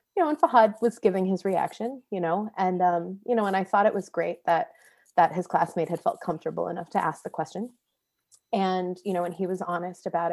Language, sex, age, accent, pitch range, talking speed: English, female, 20-39, American, 175-225 Hz, 230 wpm